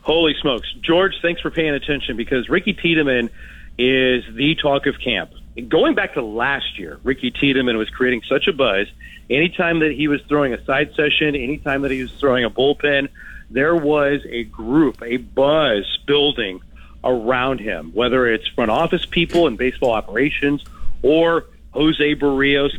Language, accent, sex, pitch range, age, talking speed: English, American, male, 115-145 Hz, 40-59, 165 wpm